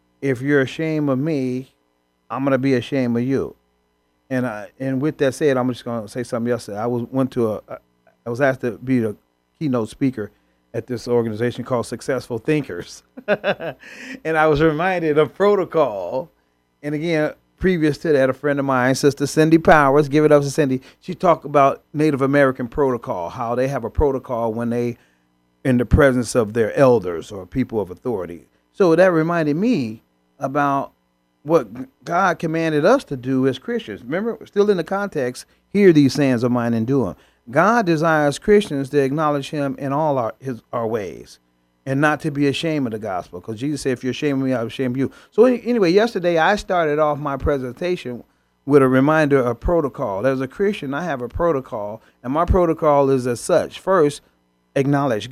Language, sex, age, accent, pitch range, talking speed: English, male, 40-59, American, 120-155 Hz, 195 wpm